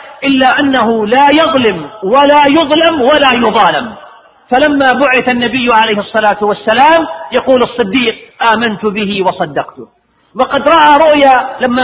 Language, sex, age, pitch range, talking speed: Arabic, male, 40-59, 225-285 Hz, 115 wpm